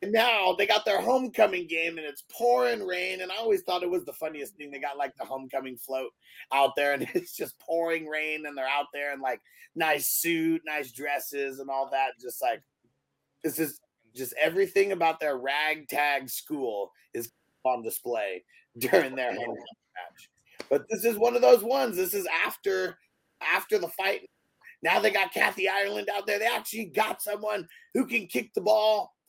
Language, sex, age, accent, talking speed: English, male, 30-49, American, 190 wpm